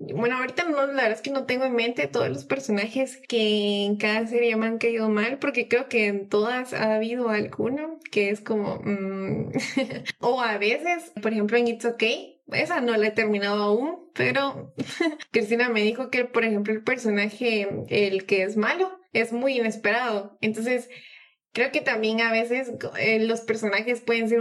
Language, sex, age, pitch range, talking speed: Spanish, female, 20-39, 210-255 Hz, 190 wpm